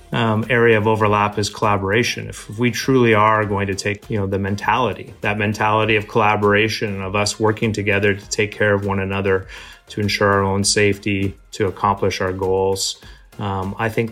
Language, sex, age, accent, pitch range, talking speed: English, male, 30-49, American, 95-110 Hz, 185 wpm